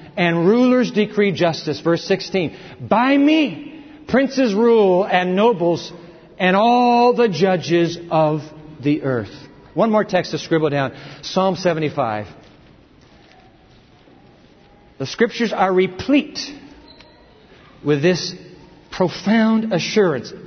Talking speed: 105 wpm